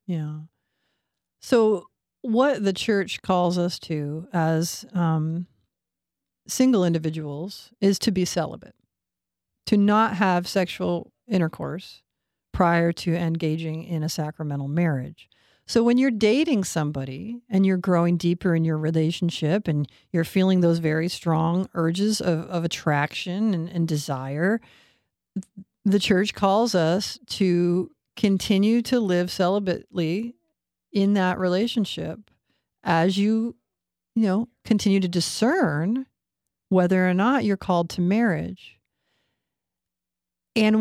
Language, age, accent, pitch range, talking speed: English, 50-69, American, 170-210 Hz, 120 wpm